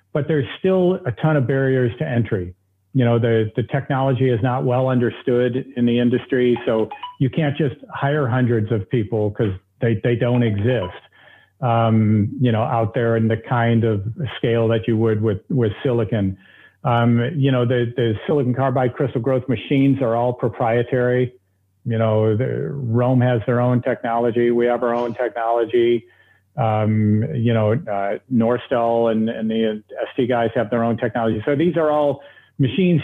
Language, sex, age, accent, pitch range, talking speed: English, male, 50-69, American, 115-135 Hz, 175 wpm